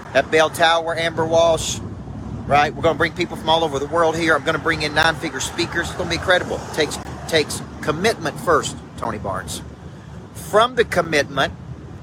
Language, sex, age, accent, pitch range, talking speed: English, male, 40-59, American, 130-165 Hz, 190 wpm